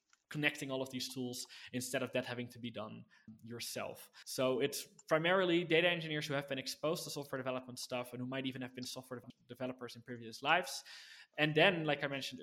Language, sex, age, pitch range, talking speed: English, male, 20-39, 120-140 Hz, 205 wpm